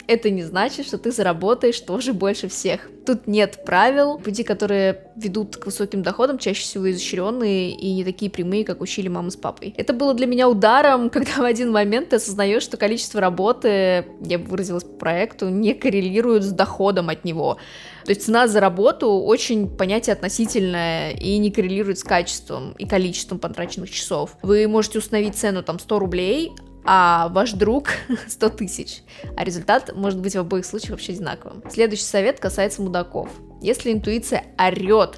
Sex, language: female, Russian